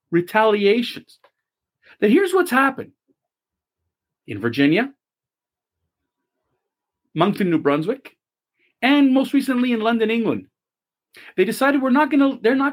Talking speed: 115 wpm